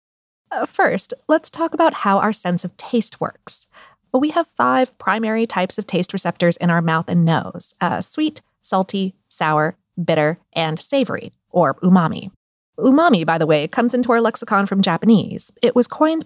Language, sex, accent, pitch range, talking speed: English, female, American, 180-255 Hz, 165 wpm